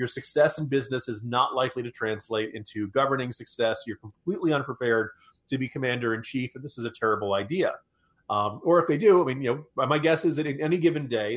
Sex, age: male, 30-49